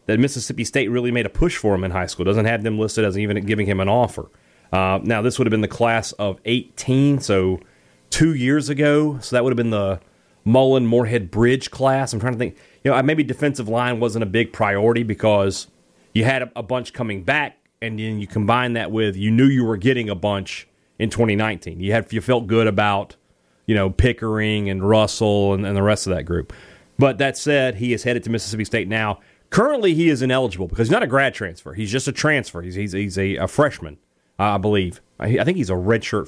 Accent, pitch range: American, 95-125 Hz